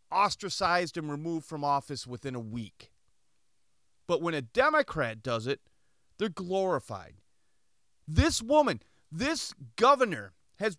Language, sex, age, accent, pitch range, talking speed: English, male, 30-49, American, 140-220 Hz, 115 wpm